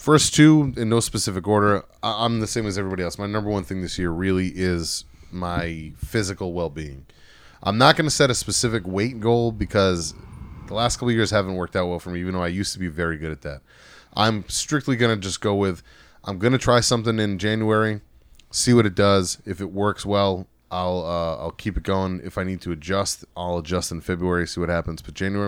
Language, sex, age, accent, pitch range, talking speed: English, male, 30-49, American, 85-110 Hz, 225 wpm